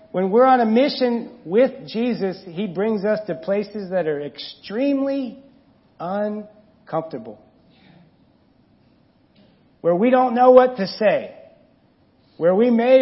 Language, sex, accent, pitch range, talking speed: English, male, American, 170-235 Hz, 120 wpm